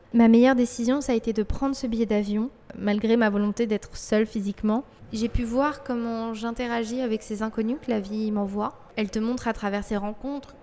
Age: 20-39